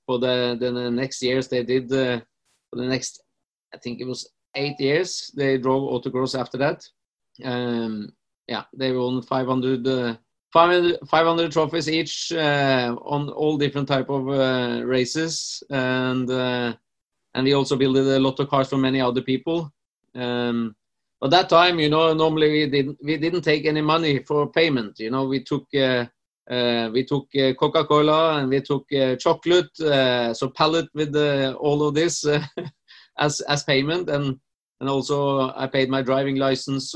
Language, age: English, 30-49